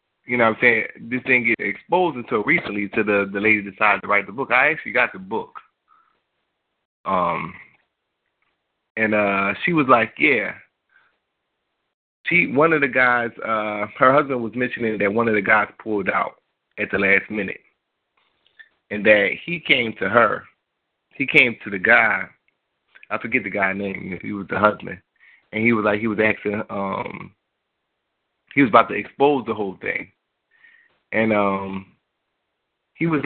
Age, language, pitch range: 30-49, Japanese, 100-120 Hz